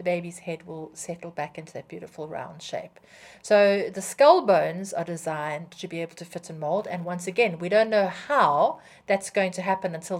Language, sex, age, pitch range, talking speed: English, female, 50-69, 165-200 Hz, 210 wpm